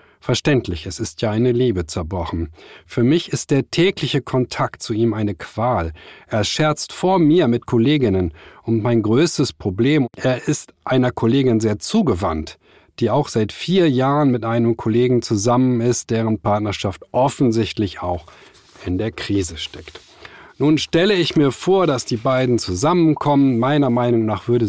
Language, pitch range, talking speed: German, 105-135 Hz, 155 wpm